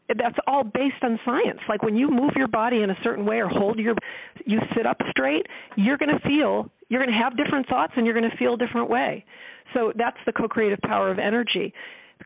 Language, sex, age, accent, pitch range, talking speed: English, female, 40-59, American, 185-240 Hz, 235 wpm